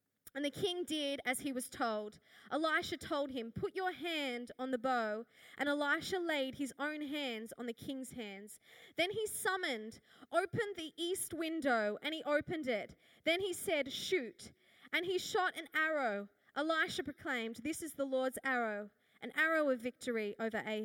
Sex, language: female, English